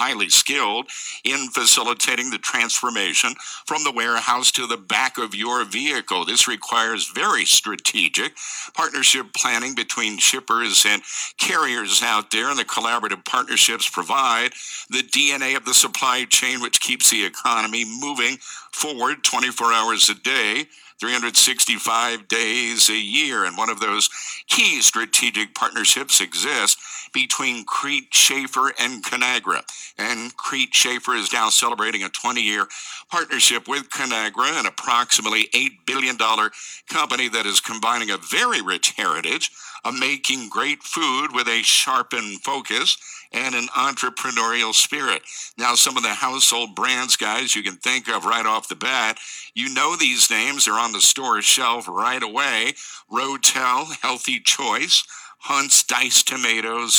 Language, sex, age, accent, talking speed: English, male, 60-79, American, 140 wpm